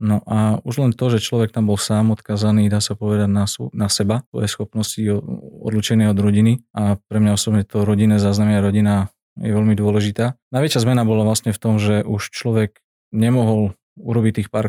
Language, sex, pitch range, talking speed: Slovak, male, 105-115 Hz, 190 wpm